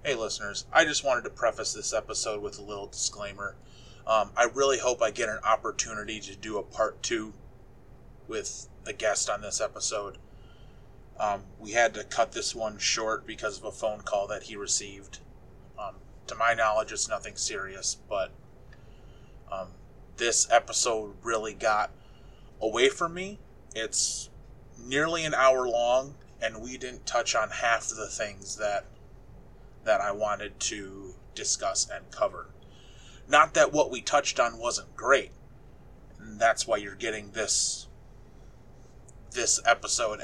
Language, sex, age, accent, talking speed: English, male, 20-39, American, 150 wpm